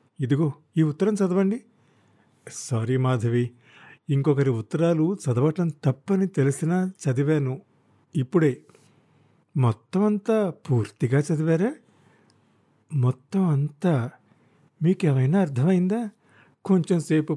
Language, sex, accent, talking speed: Telugu, male, native, 75 wpm